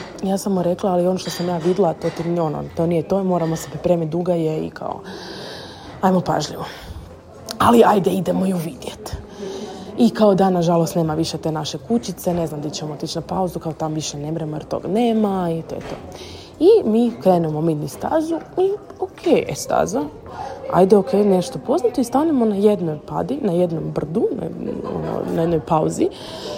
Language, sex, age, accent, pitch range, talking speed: Croatian, female, 20-39, native, 165-230 Hz, 185 wpm